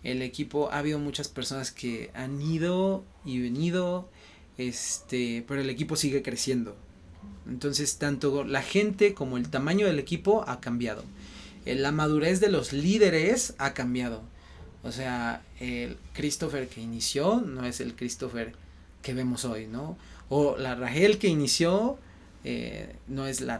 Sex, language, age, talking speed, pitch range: male, English, 30-49, 145 wpm, 120-150 Hz